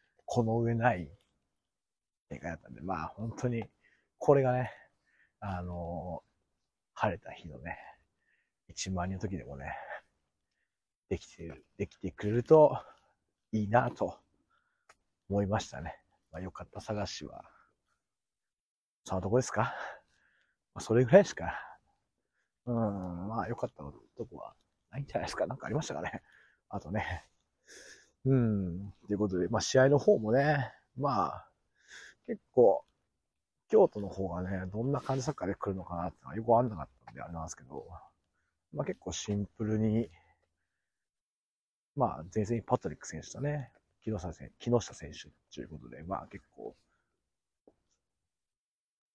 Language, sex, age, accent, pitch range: Japanese, male, 40-59, native, 90-120 Hz